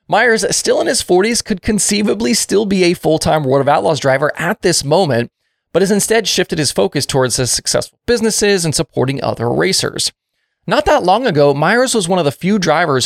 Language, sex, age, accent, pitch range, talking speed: English, male, 30-49, American, 130-190 Hz, 200 wpm